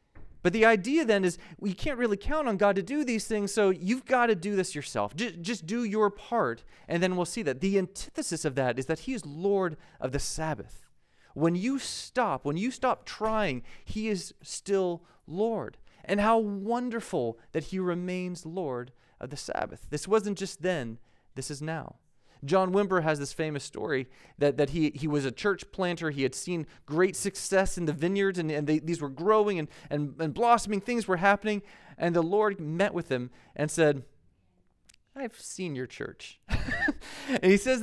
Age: 30-49